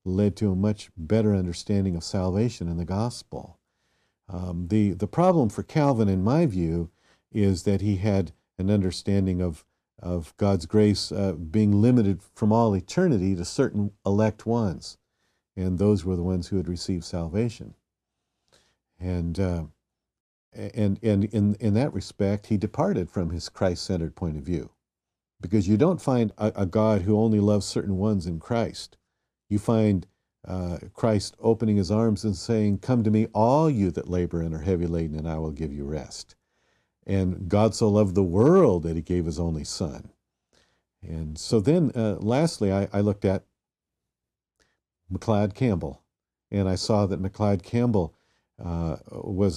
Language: English